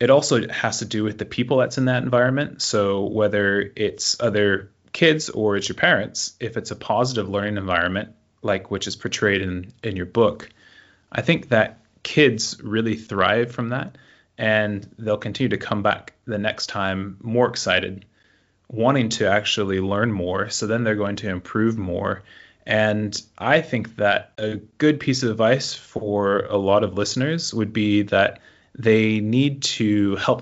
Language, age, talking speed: English, 20-39, 170 wpm